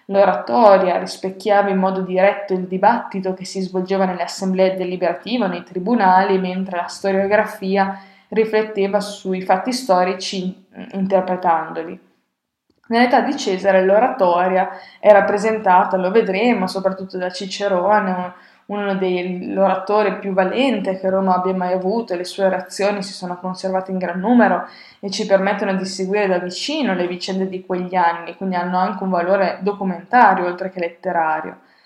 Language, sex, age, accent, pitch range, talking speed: Italian, female, 20-39, native, 185-205 Hz, 140 wpm